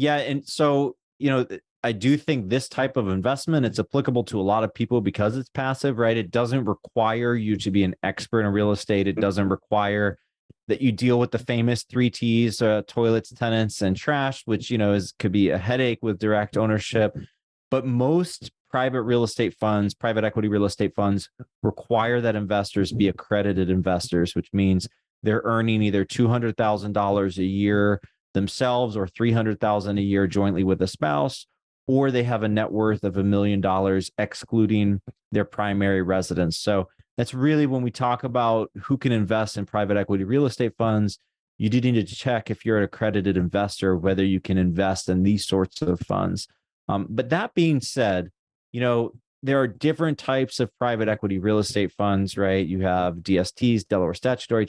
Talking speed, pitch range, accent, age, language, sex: 185 wpm, 100-120 Hz, American, 30-49, English, male